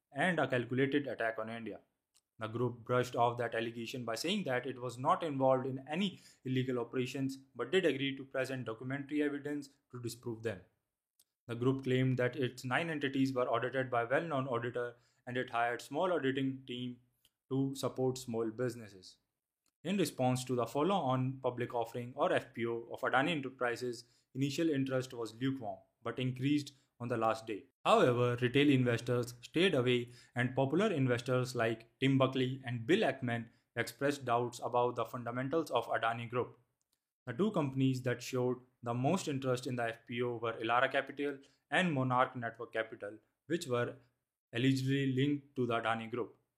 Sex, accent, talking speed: male, Indian, 165 wpm